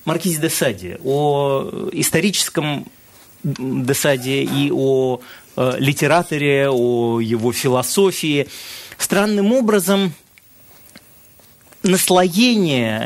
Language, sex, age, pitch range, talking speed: Russian, male, 30-49, 135-185 Hz, 70 wpm